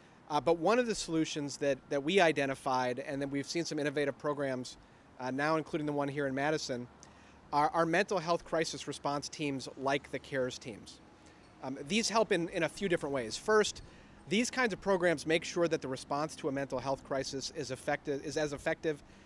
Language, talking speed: English, 205 wpm